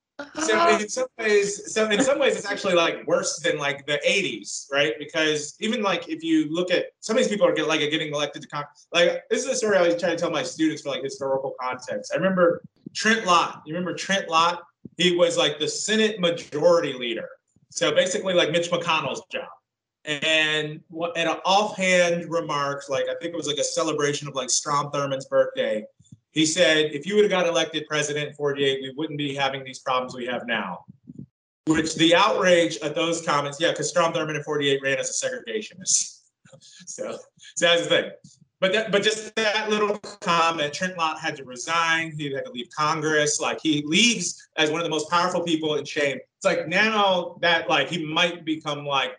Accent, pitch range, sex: American, 145-190 Hz, male